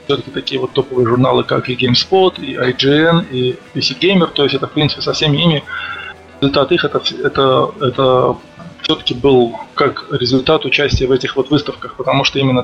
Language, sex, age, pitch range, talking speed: Russian, male, 20-39, 125-145 Hz, 175 wpm